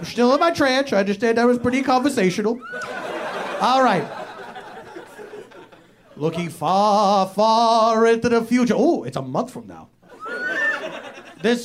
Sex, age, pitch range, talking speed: male, 30-49, 225-275 Hz, 135 wpm